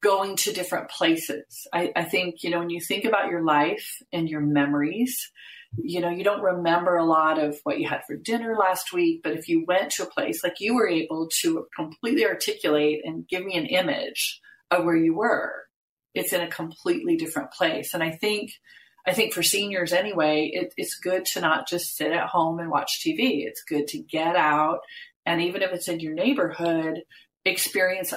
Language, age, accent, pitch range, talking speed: English, 40-59, American, 155-210 Hz, 200 wpm